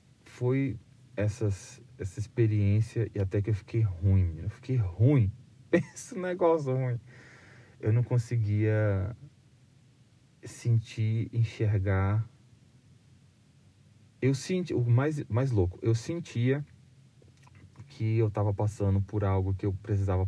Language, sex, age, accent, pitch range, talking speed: Portuguese, male, 20-39, Brazilian, 105-130 Hz, 110 wpm